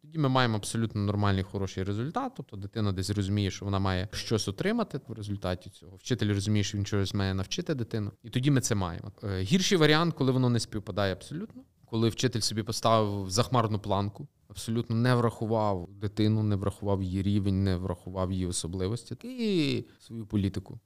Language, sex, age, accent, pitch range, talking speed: Ukrainian, male, 20-39, native, 95-115 Hz, 175 wpm